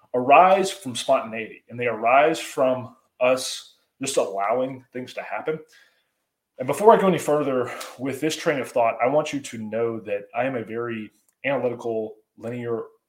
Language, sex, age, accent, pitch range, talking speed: English, male, 20-39, American, 115-155 Hz, 165 wpm